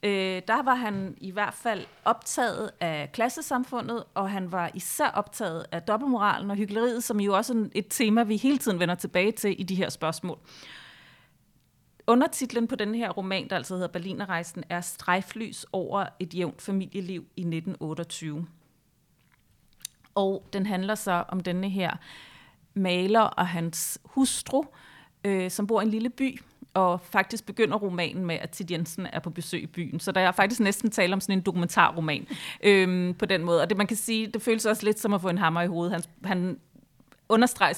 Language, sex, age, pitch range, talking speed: Danish, female, 30-49, 175-220 Hz, 180 wpm